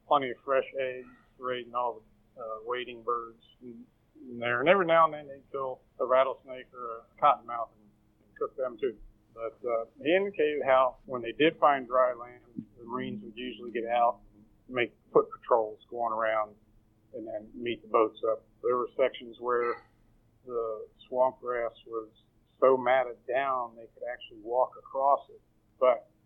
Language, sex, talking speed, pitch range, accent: English, male, 175 wpm, 115-145 Hz, American